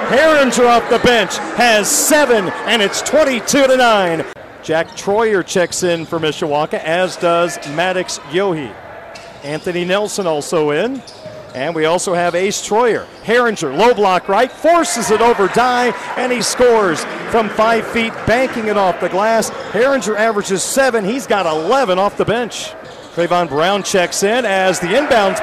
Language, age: English, 40-59